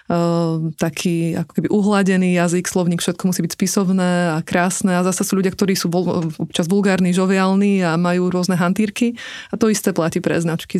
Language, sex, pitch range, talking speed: Slovak, female, 175-200 Hz, 180 wpm